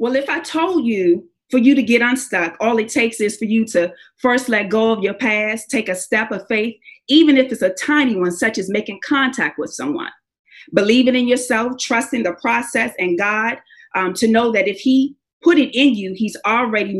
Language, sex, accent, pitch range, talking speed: English, female, American, 210-270 Hz, 210 wpm